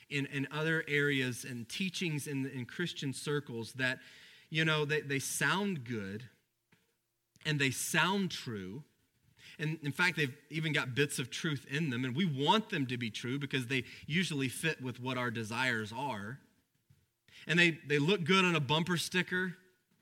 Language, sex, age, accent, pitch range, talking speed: English, male, 30-49, American, 120-165 Hz, 170 wpm